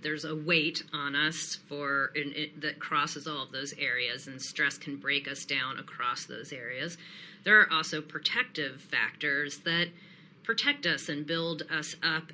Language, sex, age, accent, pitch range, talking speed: English, female, 40-59, American, 145-170 Hz, 170 wpm